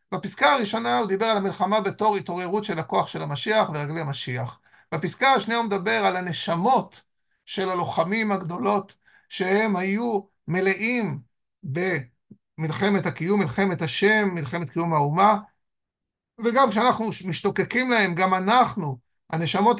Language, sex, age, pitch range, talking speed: Hebrew, male, 50-69, 175-220 Hz, 120 wpm